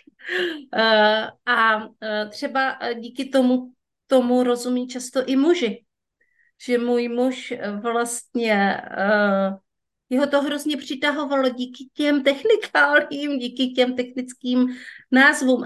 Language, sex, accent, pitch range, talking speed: Czech, female, native, 205-260 Hz, 90 wpm